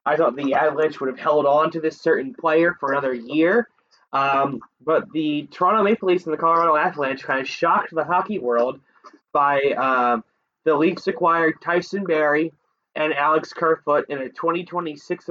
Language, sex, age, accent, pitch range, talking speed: English, male, 20-39, American, 140-185 Hz, 175 wpm